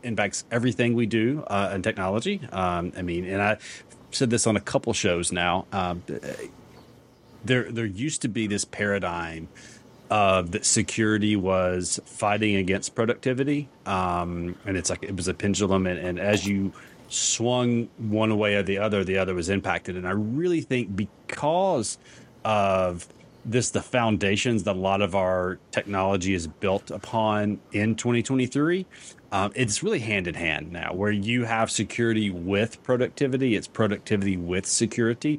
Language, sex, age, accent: English, male, 30-49, American